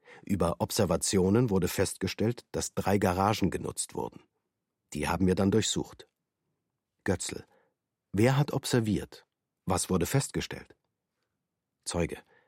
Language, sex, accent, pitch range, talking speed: German, male, German, 95-125 Hz, 105 wpm